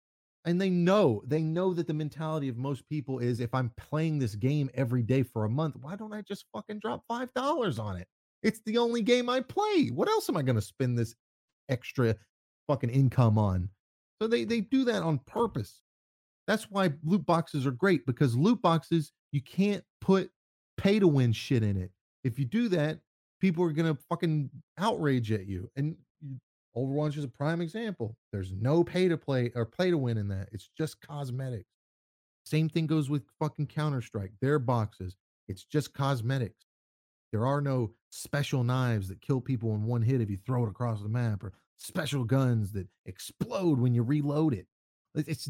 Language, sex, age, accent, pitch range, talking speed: English, male, 30-49, American, 115-165 Hz, 190 wpm